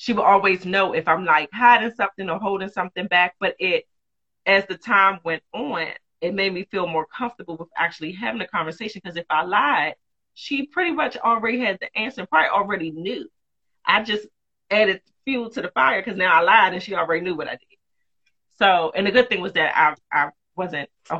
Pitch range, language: 180-235 Hz, English